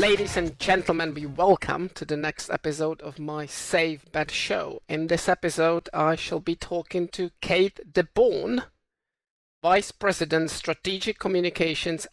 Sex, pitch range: male, 155-180 Hz